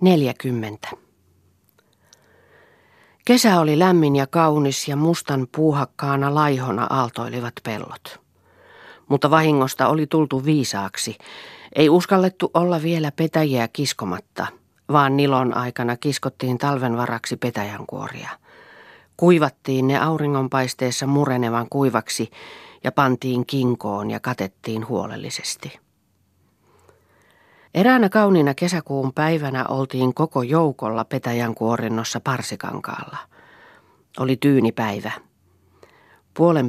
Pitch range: 120-145 Hz